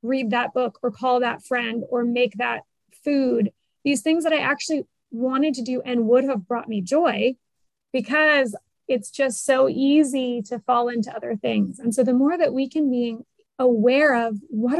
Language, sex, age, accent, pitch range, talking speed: English, female, 30-49, American, 230-280 Hz, 185 wpm